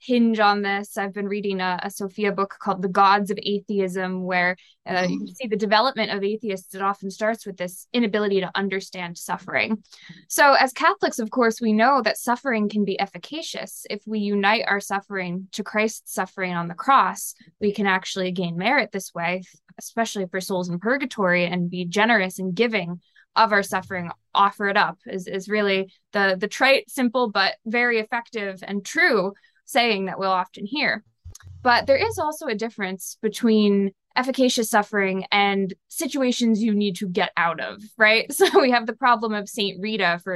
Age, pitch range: 20-39, 190-225 Hz